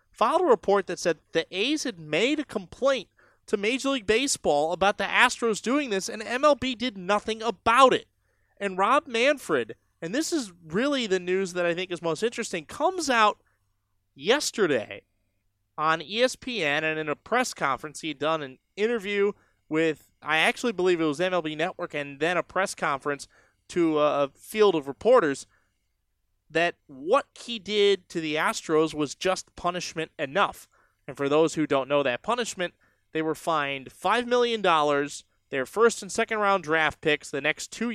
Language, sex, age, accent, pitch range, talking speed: English, male, 30-49, American, 145-220 Hz, 170 wpm